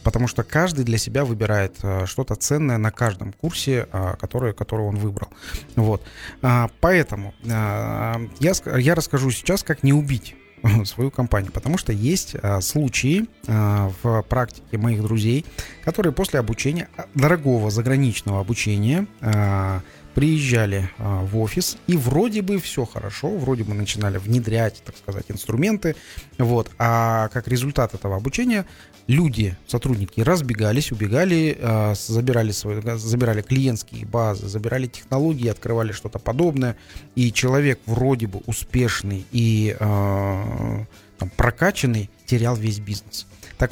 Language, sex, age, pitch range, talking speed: Russian, male, 30-49, 105-130 Hz, 115 wpm